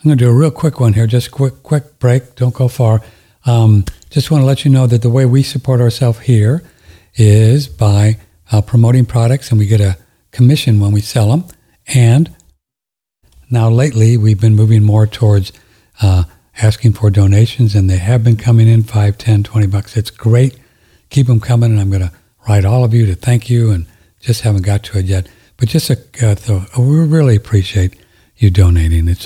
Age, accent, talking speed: 60-79, American, 205 wpm